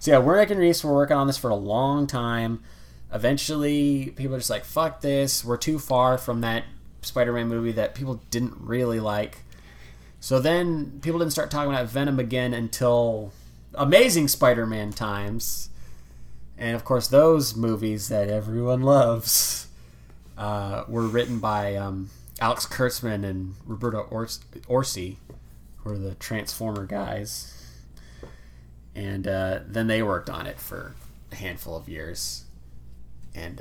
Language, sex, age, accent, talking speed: English, male, 20-39, American, 145 wpm